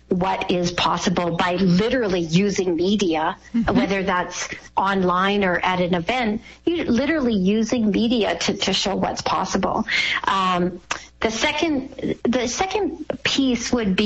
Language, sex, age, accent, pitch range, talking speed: English, female, 40-59, American, 185-235 Hz, 130 wpm